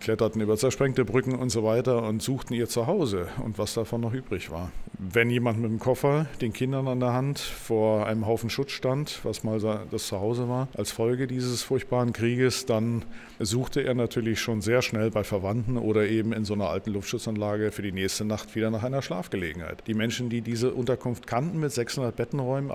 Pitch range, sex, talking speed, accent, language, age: 105-130 Hz, male, 200 wpm, German, German, 50-69